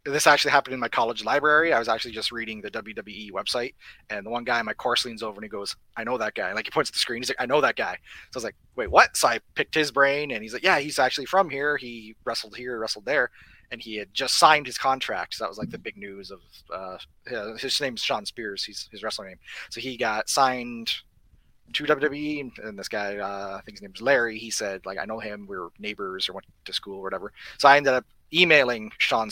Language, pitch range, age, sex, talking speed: English, 105-140 Hz, 30-49, male, 260 wpm